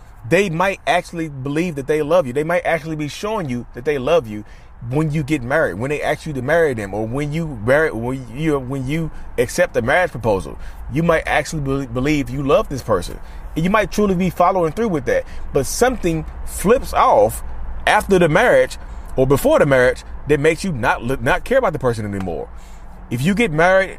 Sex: male